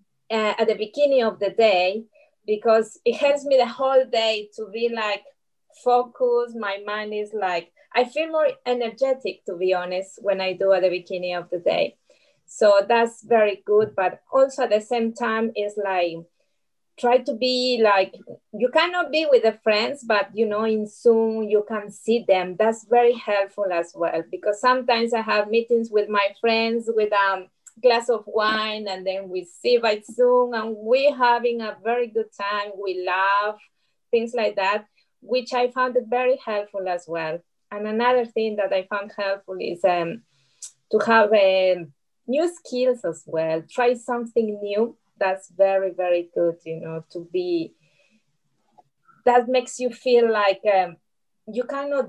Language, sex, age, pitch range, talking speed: English, female, 30-49, 195-245 Hz, 170 wpm